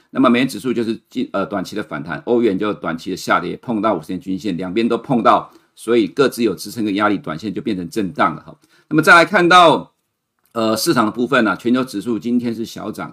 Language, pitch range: Chinese, 105-120 Hz